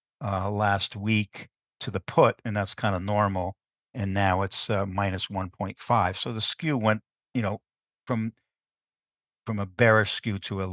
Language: English